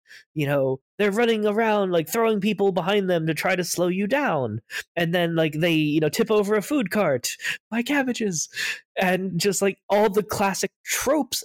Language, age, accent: English, 20-39, American